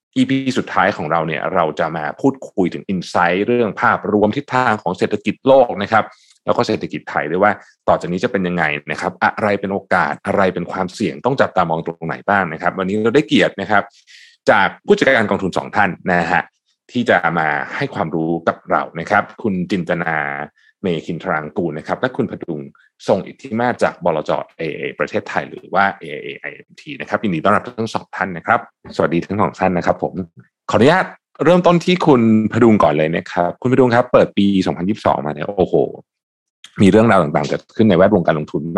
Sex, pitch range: male, 85-120 Hz